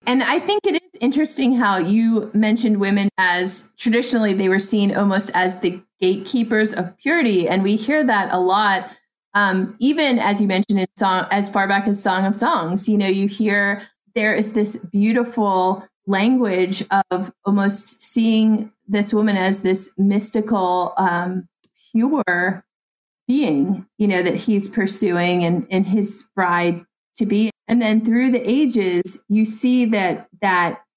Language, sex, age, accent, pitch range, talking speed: English, female, 30-49, American, 180-225 Hz, 155 wpm